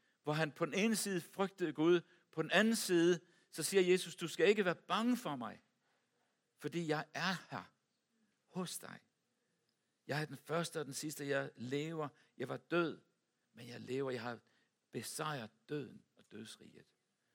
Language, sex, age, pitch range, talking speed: Danish, male, 60-79, 140-180 Hz, 170 wpm